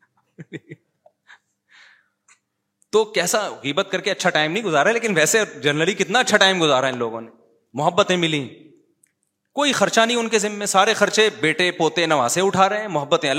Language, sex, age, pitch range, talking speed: Urdu, male, 30-49, 140-195 Hz, 165 wpm